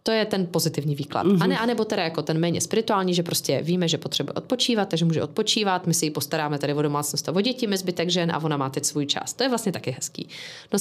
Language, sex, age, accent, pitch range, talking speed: Czech, female, 30-49, native, 150-195 Hz, 245 wpm